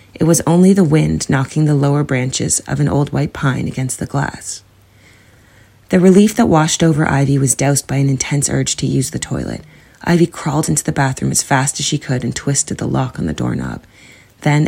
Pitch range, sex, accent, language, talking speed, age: 120-150 Hz, female, American, English, 210 wpm, 30-49